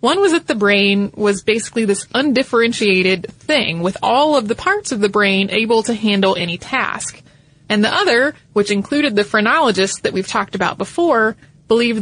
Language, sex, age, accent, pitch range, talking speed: English, female, 20-39, American, 195-235 Hz, 180 wpm